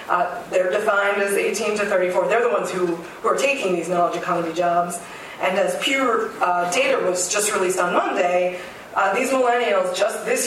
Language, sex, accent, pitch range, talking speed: English, female, American, 180-205 Hz, 190 wpm